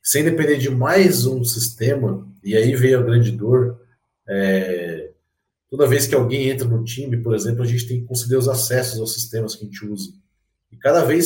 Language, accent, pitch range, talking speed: Portuguese, Brazilian, 115-155 Hz, 205 wpm